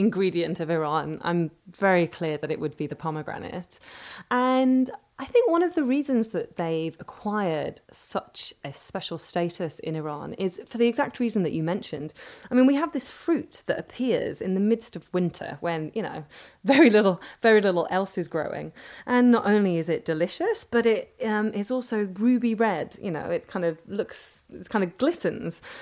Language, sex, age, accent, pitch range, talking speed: English, female, 20-39, British, 165-225 Hz, 190 wpm